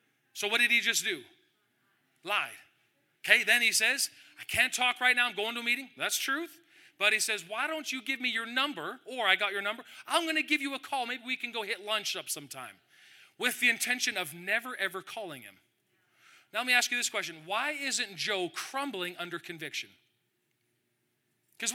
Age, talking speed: 40-59, 205 wpm